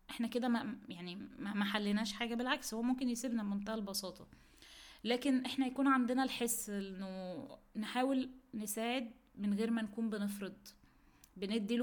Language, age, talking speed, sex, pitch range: Arabic, 20-39, 130 wpm, female, 185-230 Hz